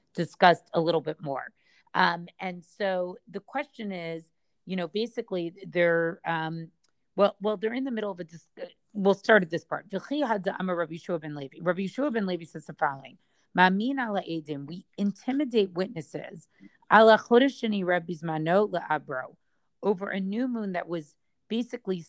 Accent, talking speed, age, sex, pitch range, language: American, 130 wpm, 40-59, female, 165-205 Hz, English